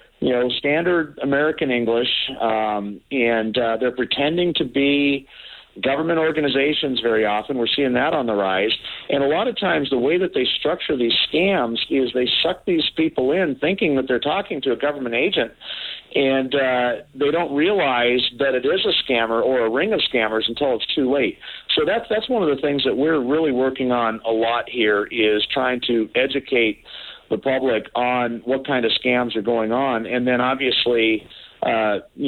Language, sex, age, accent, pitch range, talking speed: English, male, 50-69, American, 115-135 Hz, 185 wpm